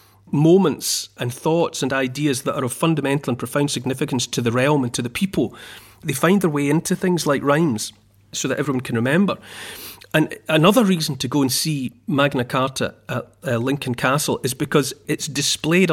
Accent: British